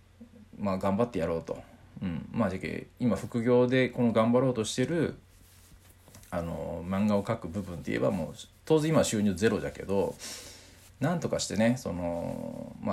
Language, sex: Japanese, male